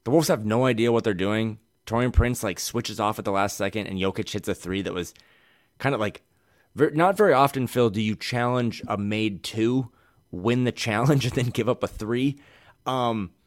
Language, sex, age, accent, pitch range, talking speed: English, male, 20-39, American, 105-125 Hz, 210 wpm